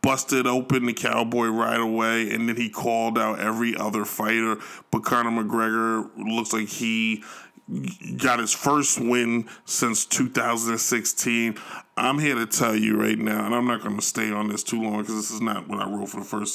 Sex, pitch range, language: male, 110-130 Hz, English